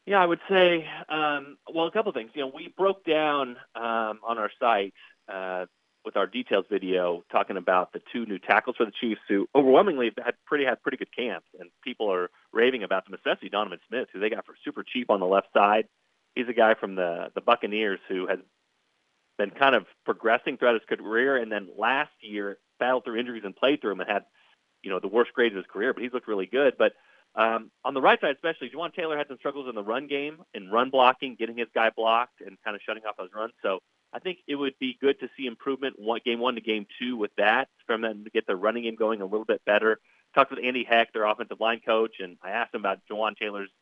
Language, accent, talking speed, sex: English, American, 240 wpm, male